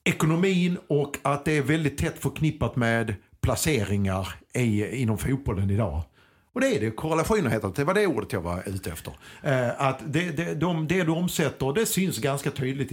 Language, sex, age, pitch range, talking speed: Swedish, male, 50-69, 110-155 Hz, 185 wpm